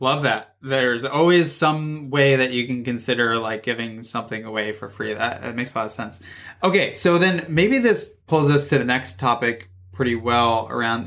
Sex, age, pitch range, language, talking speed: male, 20-39, 115-150 Hz, English, 200 wpm